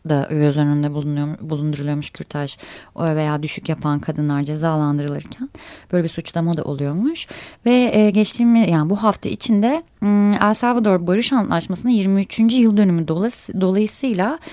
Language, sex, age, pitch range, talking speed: Turkish, female, 30-49, 185-235 Hz, 130 wpm